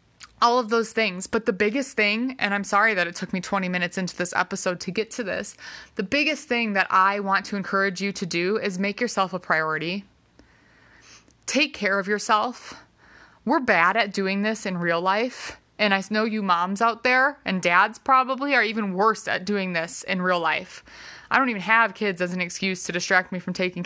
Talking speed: 210 wpm